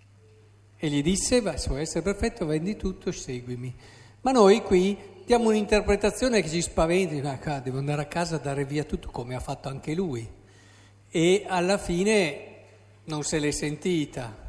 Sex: male